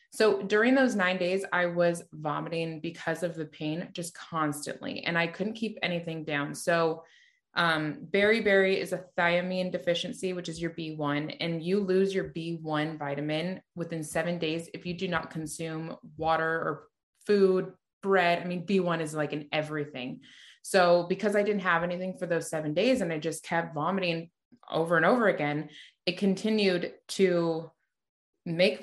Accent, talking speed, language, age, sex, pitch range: American, 165 wpm, English, 20-39, female, 160-190 Hz